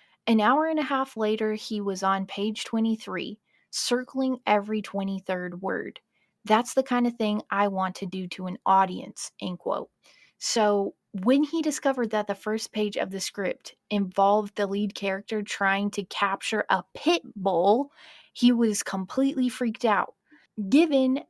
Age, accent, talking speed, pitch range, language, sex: 20-39, American, 160 wpm, 200-245 Hz, English, female